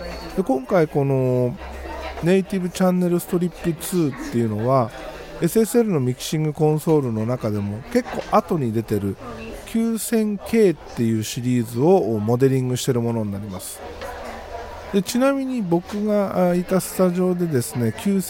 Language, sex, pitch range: Japanese, male, 120-195 Hz